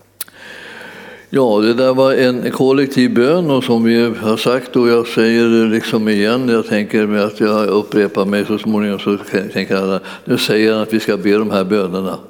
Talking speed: 190 wpm